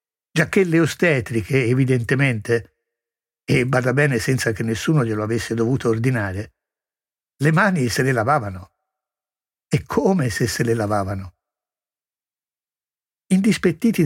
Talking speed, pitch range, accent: 105 wpm, 120-195 Hz, native